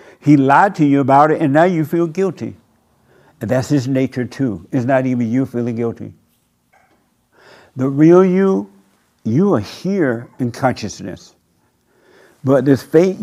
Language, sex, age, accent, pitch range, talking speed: English, male, 60-79, American, 120-160 Hz, 150 wpm